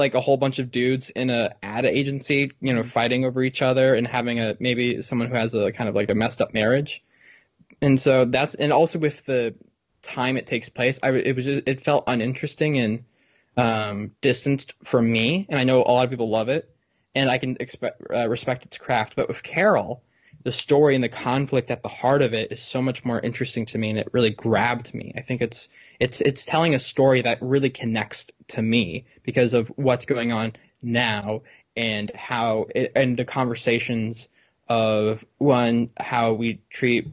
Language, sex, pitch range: English, male, 115-135 Hz